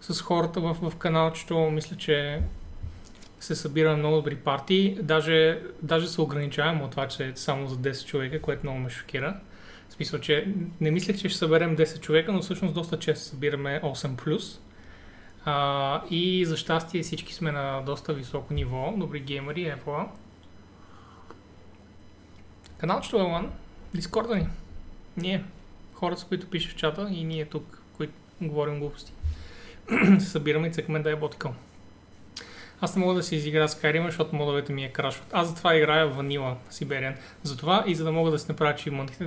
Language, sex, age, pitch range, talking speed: Bulgarian, male, 20-39, 135-160 Hz, 165 wpm